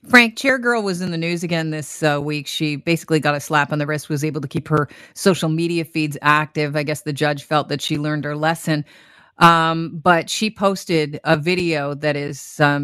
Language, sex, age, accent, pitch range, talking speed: English, female, 30-49, American, 155-175 Hz, 220 wpm